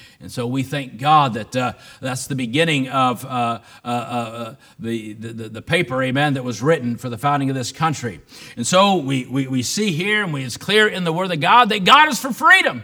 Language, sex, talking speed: English, male, 225 wpm